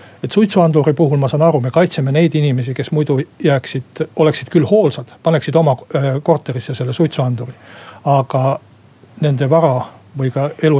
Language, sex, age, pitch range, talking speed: Finnish, male, 60-79, 135-170 Hz, 150 wpm